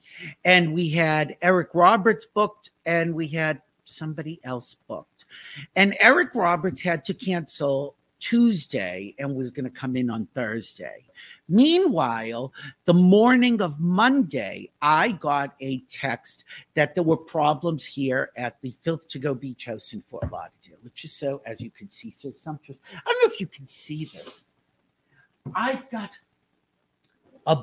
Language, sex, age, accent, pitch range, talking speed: English, male, 50-69, American, 130-190 Hz, 155 wpm